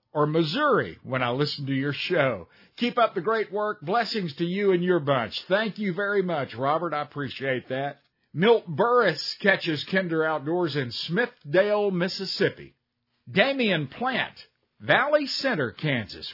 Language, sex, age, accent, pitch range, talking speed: English, male, 50-69, American, 140-205 Hz, 145 wpm